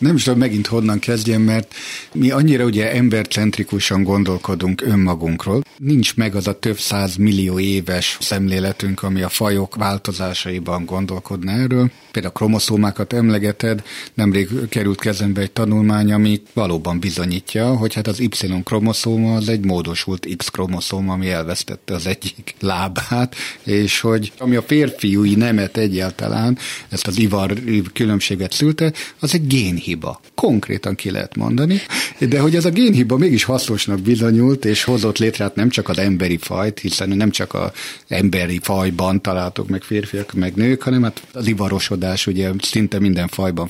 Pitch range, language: 95-125 Hz, Hungarian